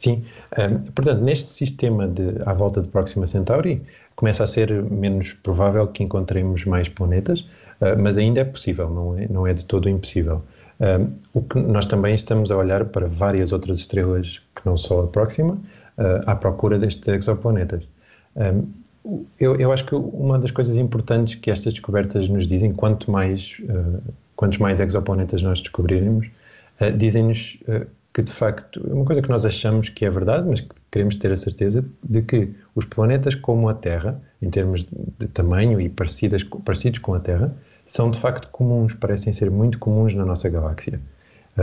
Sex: male